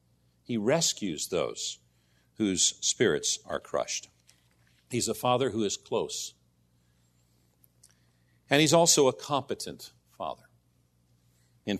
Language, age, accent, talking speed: English, 50-69, American, 100 wpm